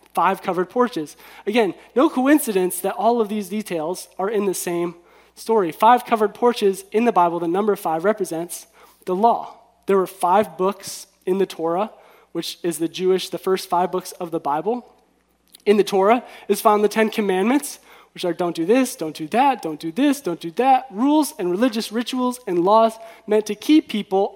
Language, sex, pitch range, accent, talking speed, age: English, male, 180-230 Hz, American, 190 wpm, 20-39